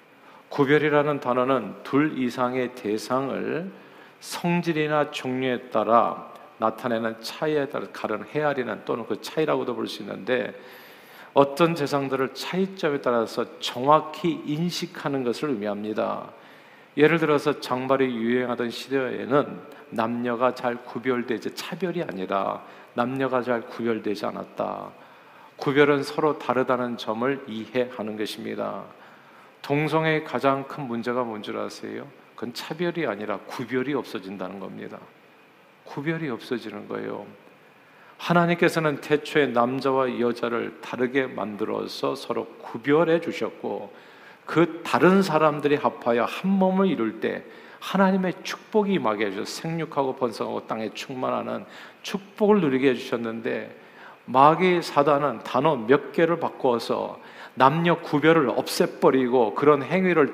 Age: 50-69